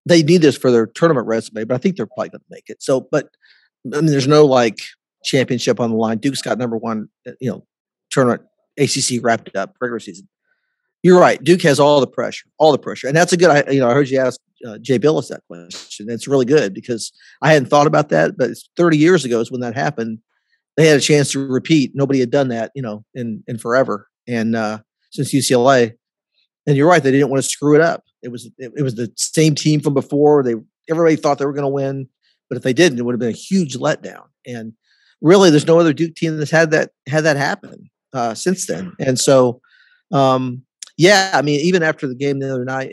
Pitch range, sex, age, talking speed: 120-155 Hz, male, 50-69, 240 wpm